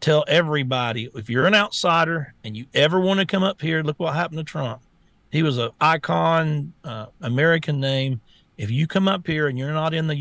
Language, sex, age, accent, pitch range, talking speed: English, male, 50-69, American, 125-160 Hz, 210 wpm